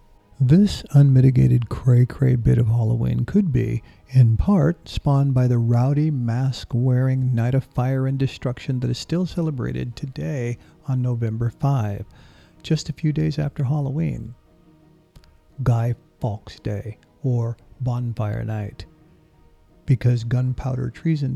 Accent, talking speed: American, 120 wpm